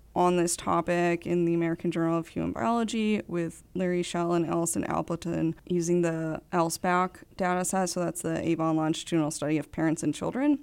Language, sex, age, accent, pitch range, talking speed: English, female, 20-39, American, 150-175 Hz, 175 wpm